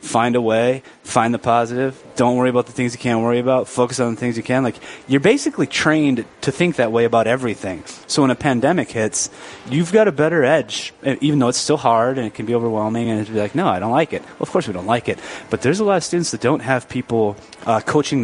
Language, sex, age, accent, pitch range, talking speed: English, male, 30-49, American, 105-130 Hz, 255 wpm